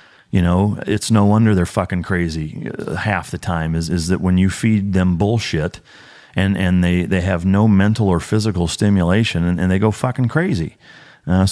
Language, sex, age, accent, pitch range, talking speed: English, male, 30-49, American, 85-100 Hz, 195 wpm